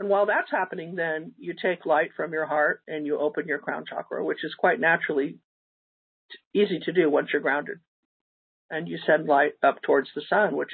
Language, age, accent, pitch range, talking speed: English, 50-69, American, 150-195 Hz, 200 wpm